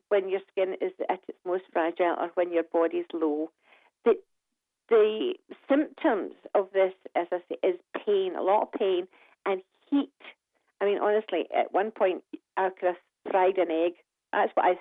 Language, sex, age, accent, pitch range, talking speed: English, female, 40-59, British, 175-250 Hz, 180 wpm